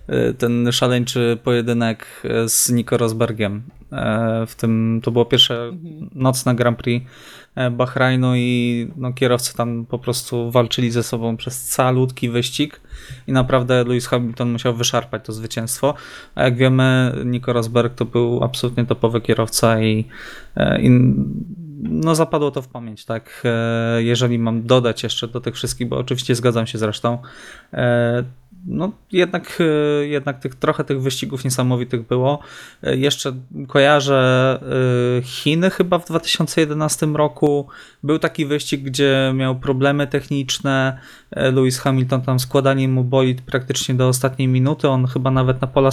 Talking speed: 135 wpm